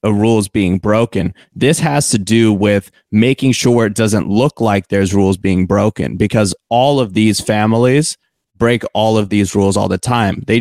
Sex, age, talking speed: male, 20-39, 185 wpm